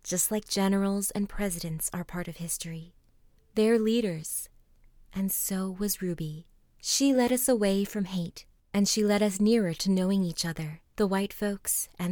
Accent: American